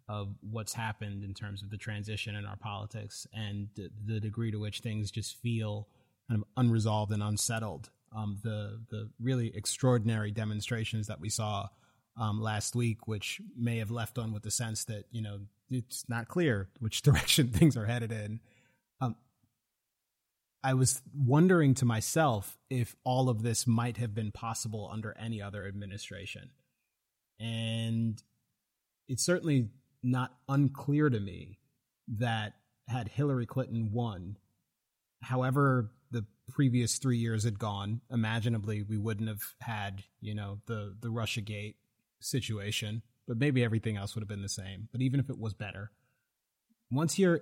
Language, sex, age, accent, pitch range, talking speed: English, male, 30-49, American, 105-125 Hz, 155 wpm